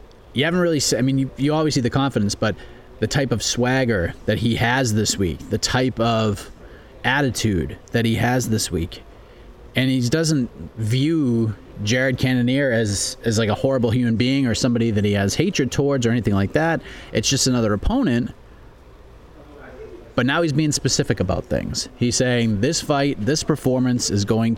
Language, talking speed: English, 180 wpm